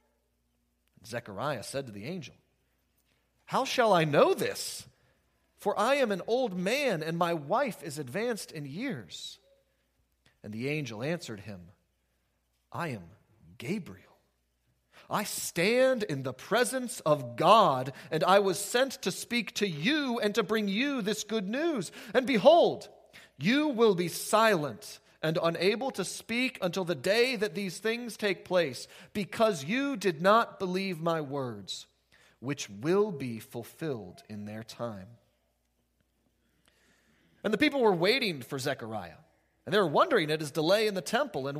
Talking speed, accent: 150 wpm, American